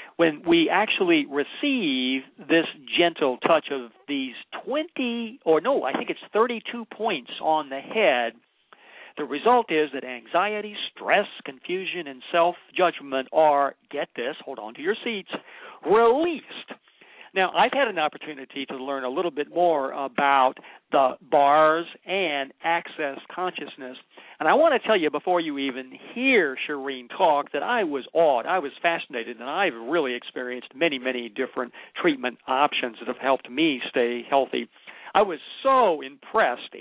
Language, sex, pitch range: English, male, 135-215 Hz